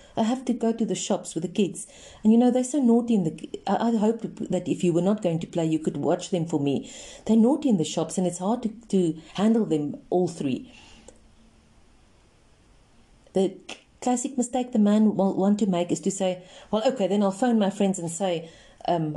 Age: 40-59